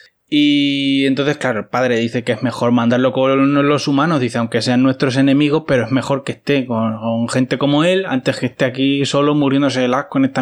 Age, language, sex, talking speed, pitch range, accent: 20-39, Spanish, male, 215 wpm, 130-160 Hz, Spanish